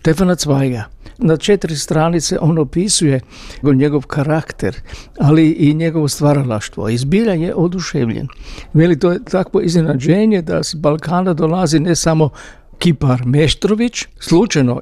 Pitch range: 140-170 Hz